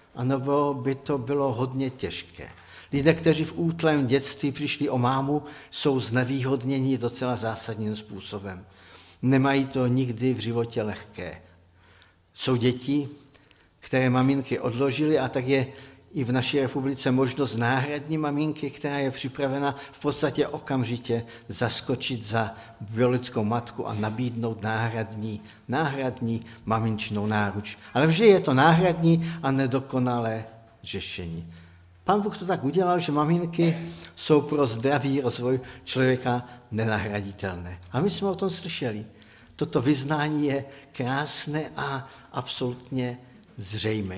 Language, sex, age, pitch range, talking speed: Czech, male, 50-69, 115-150 Hz, 120 wpm